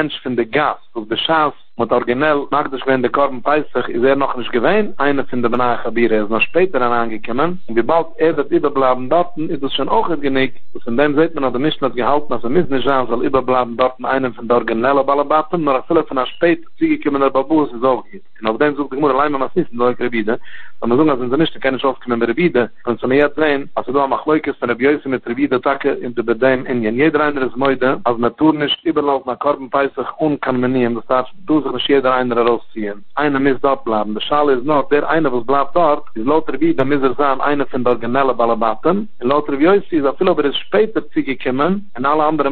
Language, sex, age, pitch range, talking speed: English, male, 50-69, 125-150 Hz, 80 wpm